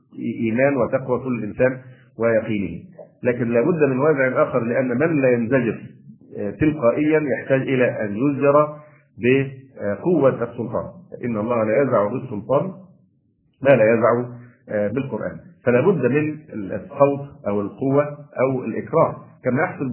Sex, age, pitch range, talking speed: male, 50-69, 115-145 Hz, 115 wpm